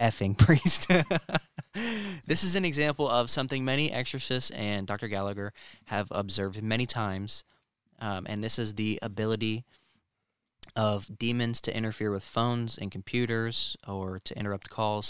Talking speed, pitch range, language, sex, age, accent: 140 wpm, 100-125 Hz, English, male, 20-39, American